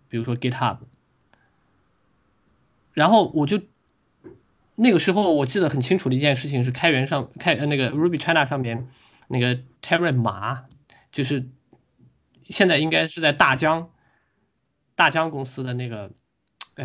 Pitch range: 120-145 Hz